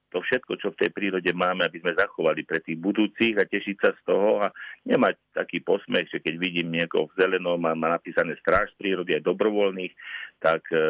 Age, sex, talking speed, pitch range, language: 50-69, male, 195 wpm, 85-110 Hz, Slovak